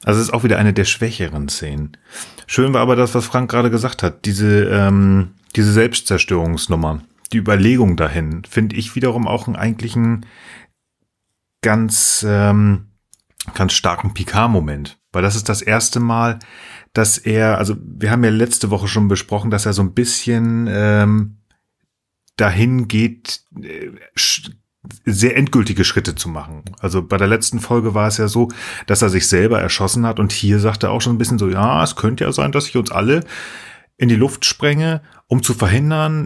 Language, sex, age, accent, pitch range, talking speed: German, male, 30-49, German, 100-120 Hz, 175 wpm